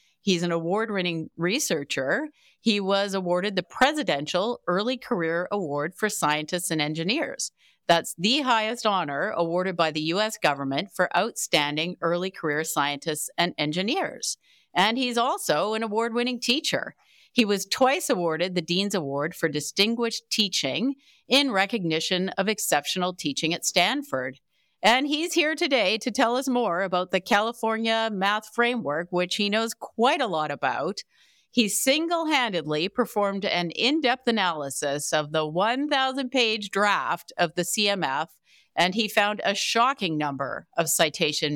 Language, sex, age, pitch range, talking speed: English, female, 50-69, 160-230 Hz, 140 wpm